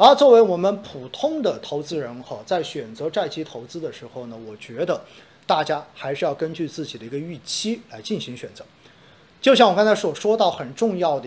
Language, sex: Chinese, male